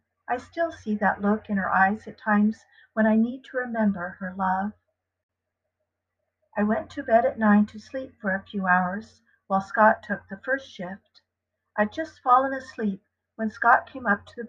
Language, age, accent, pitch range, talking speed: English, 50-69, American, 195-245 Hz, 185 wpm